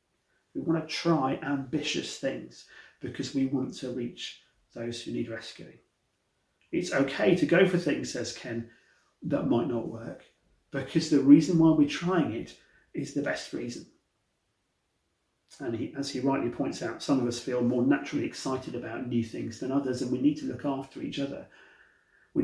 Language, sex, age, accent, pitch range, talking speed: English, male, 40-59, British, 120-150 Hz, 175 wpm